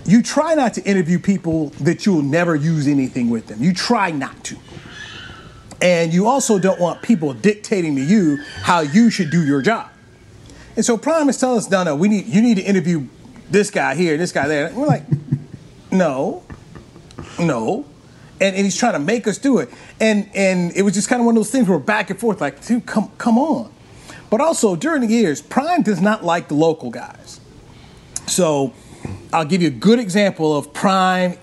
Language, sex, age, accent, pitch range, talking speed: English, male, 30-49, American, 150-210 Hz, 210 wpm